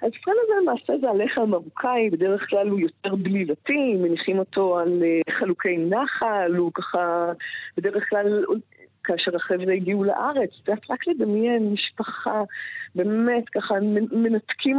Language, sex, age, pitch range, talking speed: Hebrew, female, 20-39, 190-255 Hz, 125 wpm